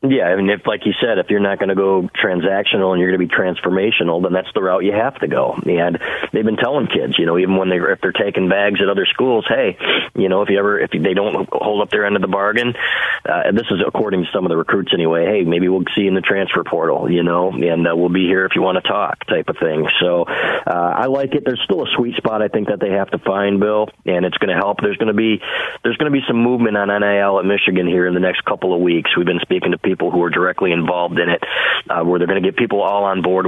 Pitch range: 90-100 Hz